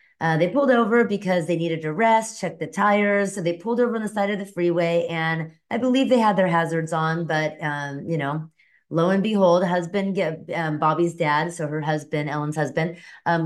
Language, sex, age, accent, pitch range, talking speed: English, female, 30-49, American, 160-205 Hz, 210 wpm